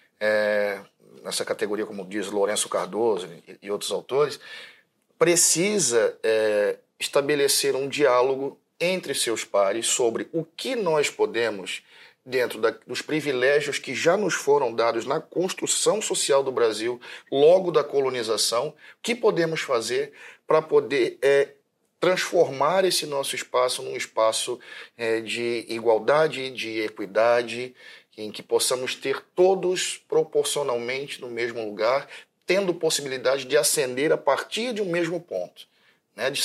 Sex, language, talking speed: male, Portuguese, 130 wpm